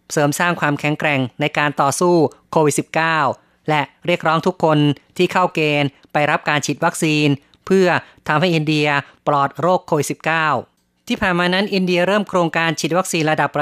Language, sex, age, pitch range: Thai, female, 30-49, 145-175 Hz